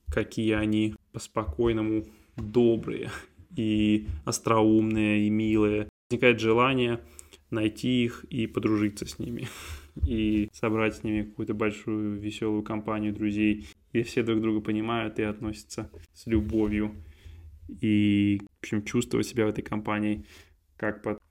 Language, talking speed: Russian, 125 wpm